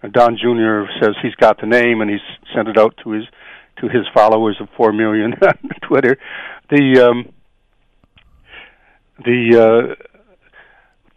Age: 60-79